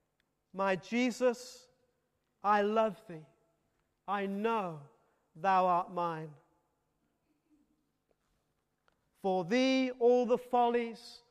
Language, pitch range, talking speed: English, 205-275 Hz, 80 wpm